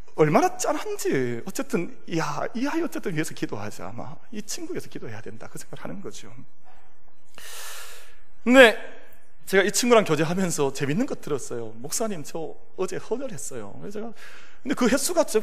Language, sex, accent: Korean, male, native